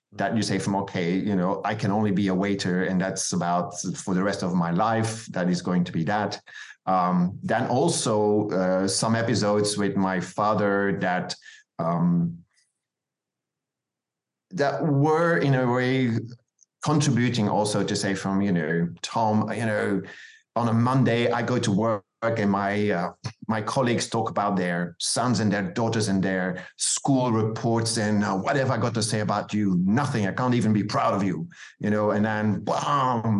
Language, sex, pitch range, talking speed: English, male, 100-125 Hz, 180 wpm